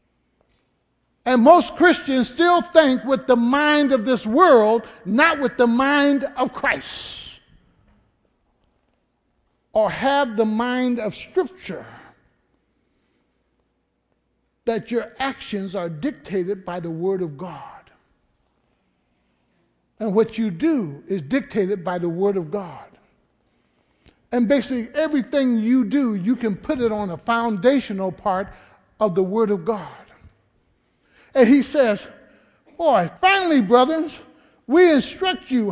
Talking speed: 120 wpm